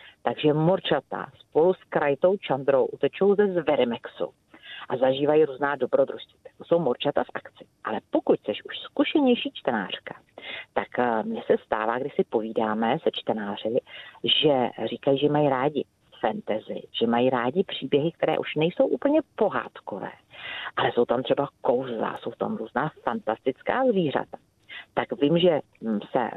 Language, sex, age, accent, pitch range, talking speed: Czech, female, 40-59, native, 130-200 Hz, 140 wpm